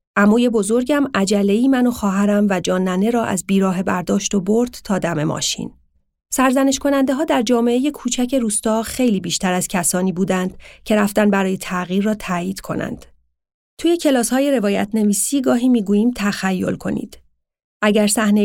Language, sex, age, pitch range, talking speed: Persian, female, 40-59, 180-220 Hz, 150 wpm